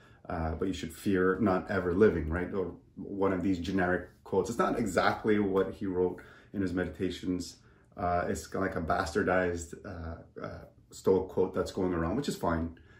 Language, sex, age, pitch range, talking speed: English, male, 30-49, 85-105 Hz, 190 wpm